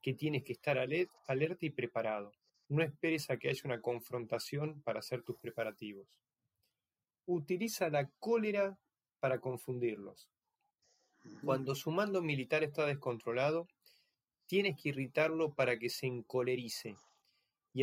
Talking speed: 125 wpm